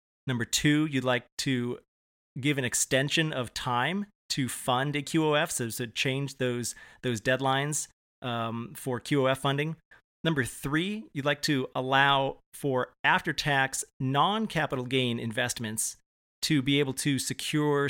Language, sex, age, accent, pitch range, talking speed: English, male, 30-49, American, 120-140 Hz, 135 wpm